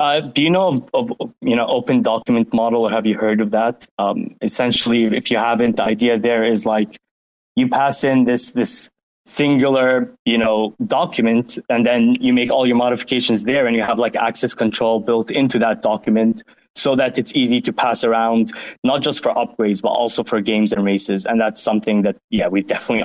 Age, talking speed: 20-39, 205 wpm